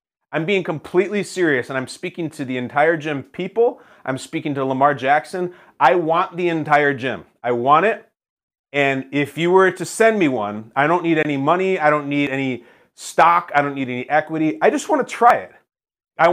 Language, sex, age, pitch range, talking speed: English, male, 30-49, 145-205 Hz, 200 wpm